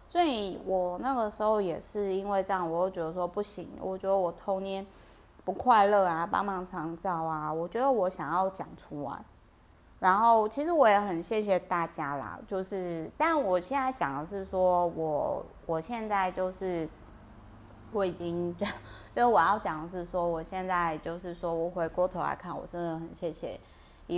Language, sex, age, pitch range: Chinese, female, 20-39, 165-200 Hz